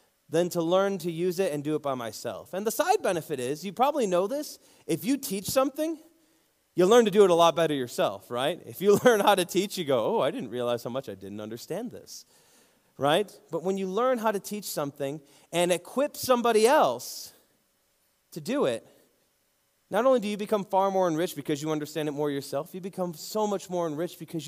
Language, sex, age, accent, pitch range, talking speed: English, male, 30-49, American, 140-195 Hz, 220 wpm